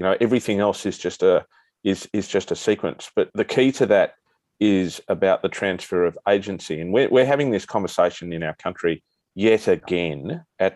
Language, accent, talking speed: English, Australian, 195 wpm